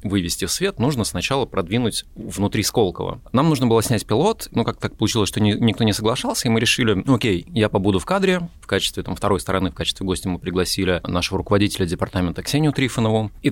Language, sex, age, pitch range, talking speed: Russian, male, 20-39, 95-125 Hz, 205 wpm